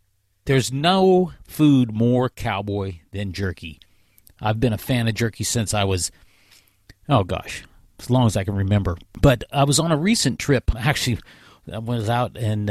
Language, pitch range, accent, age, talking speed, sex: English, 105-135 Hz, American, 50-69, 170 wpm, male